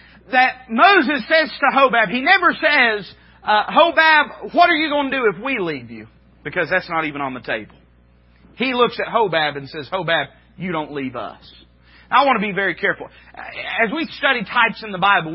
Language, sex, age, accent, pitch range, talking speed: English, male, 40-59, American, 160-245 Hz, 200 wpm